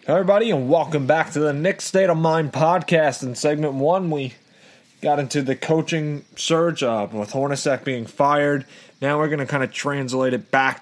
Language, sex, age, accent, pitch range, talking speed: English, male, 20-39, American, 120-145 Hz, 190 wpm